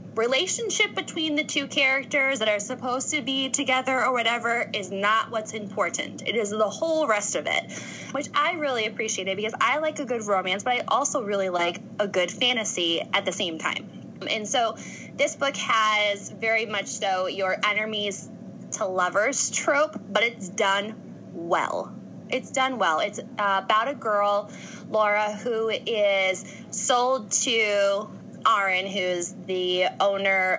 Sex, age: female, 10-29